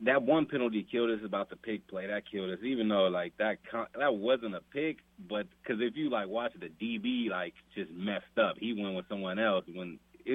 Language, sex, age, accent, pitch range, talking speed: English, male, 30-49, American, 85-110 Hz, 230 wpm